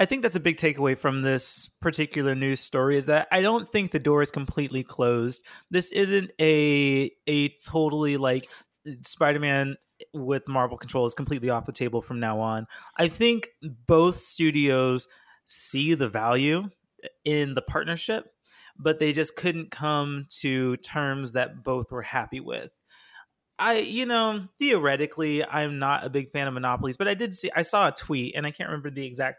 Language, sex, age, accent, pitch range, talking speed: English, male, 30-49, American, 130-170 Hz, 175 wpm